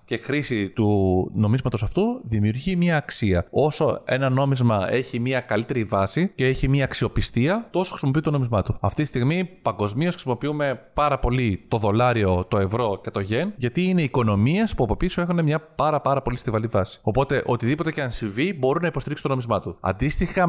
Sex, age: male, 30-49